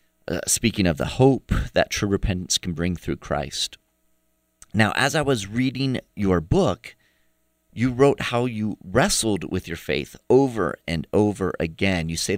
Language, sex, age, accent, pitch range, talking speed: English, male, 40-59, American, 95-130 Hz, 160 wpm